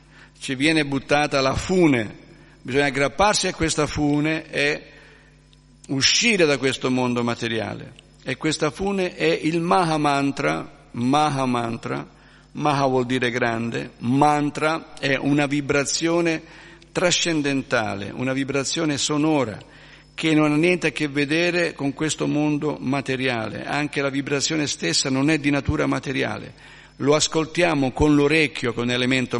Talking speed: 130 wpm